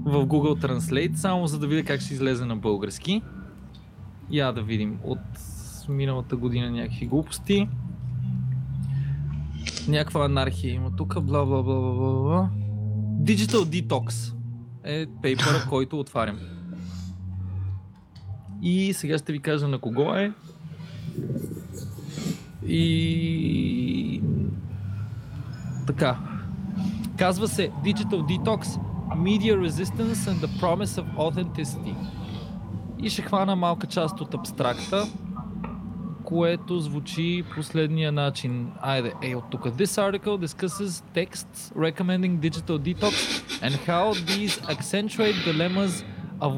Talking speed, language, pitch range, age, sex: 105 wpm, English, 120-180 Hz, 20-39, male